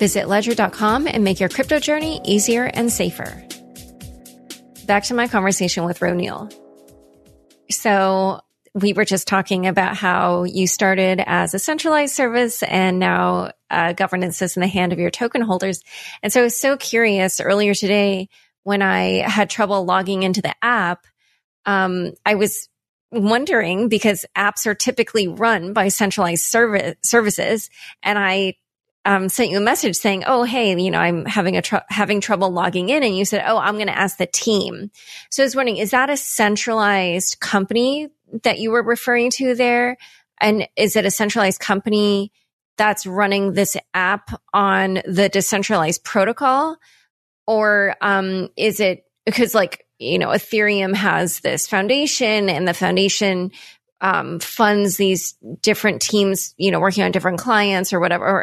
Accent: American